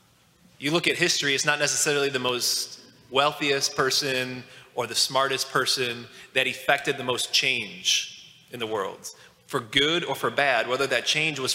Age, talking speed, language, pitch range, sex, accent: 20-39, 165 wpm, English, 130-170 Hz, male, American